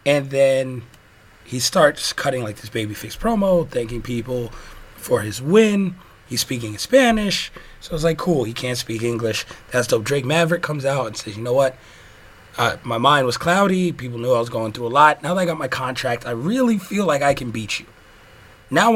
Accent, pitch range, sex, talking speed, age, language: American, 115-175 Hz, male, 210 wpm, 30-49, English